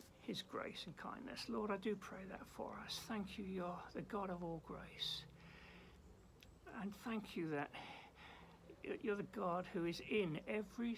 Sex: male